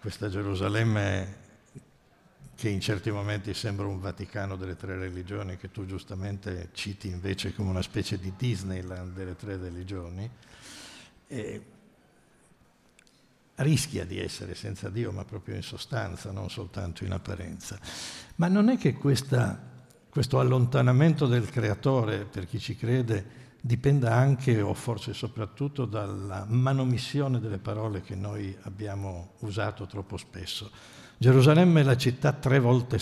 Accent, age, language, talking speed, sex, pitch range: native, 60-79, Italian, 135 wpm, male, 100-125 Hz